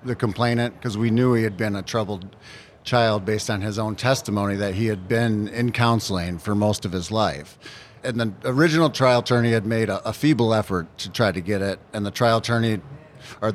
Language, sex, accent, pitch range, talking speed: English, male, American, 105-125 Hz, 215 wpm